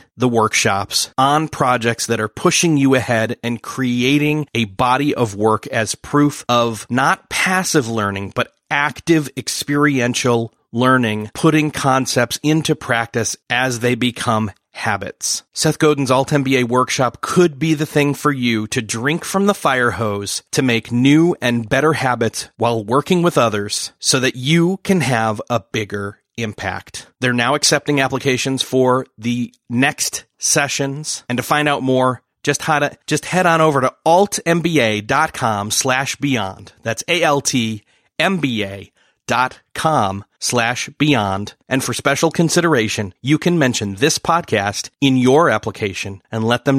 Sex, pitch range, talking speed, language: male, 115-150 Hz, 140 wpm, English